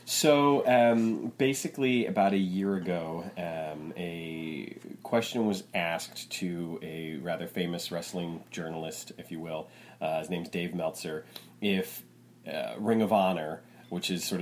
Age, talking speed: 30-49, 140 wpm